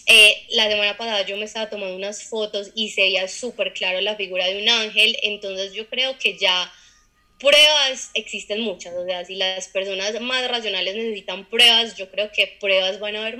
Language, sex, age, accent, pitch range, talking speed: Spanish, female, 20-39, Colombian, 195-225 Hz, 195 wpm